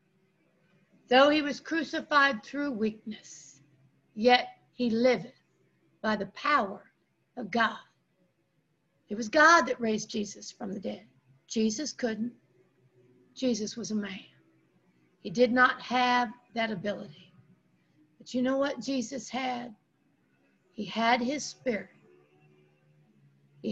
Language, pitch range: English, 170-245 Hz